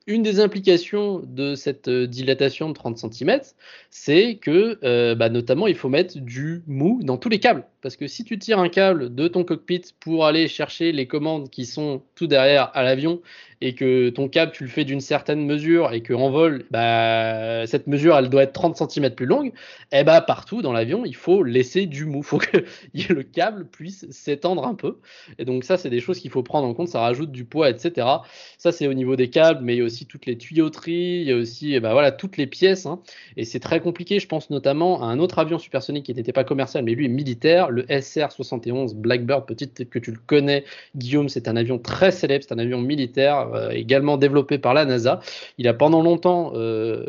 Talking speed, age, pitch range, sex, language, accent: 225 wpm, 20-39, 125-175 Hz, male, French, French